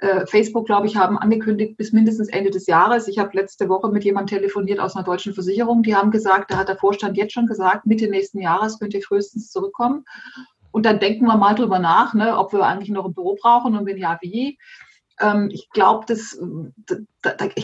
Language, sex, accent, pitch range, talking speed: German, female, German, 190-220 Hz, 200 wpm